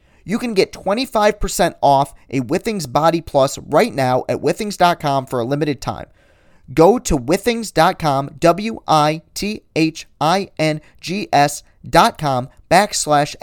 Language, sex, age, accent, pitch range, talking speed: English, male, 40-59, American, 135-170 Hz, 140 wpm